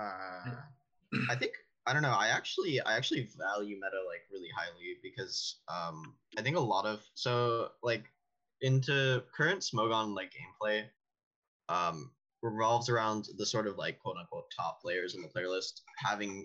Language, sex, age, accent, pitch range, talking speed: English, male, 10-29, American, 100-135 Hz, 160 wpm